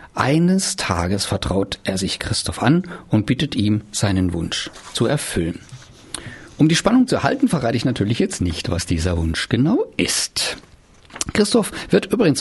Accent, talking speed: German, 155 wpm